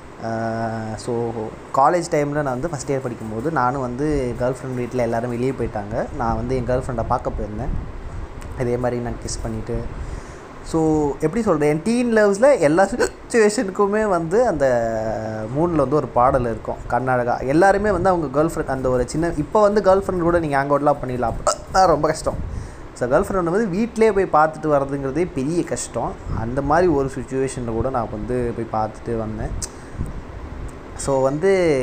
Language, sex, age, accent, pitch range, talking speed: Tamil, male, 20-39, native, 120-165 Hz, 155 wpm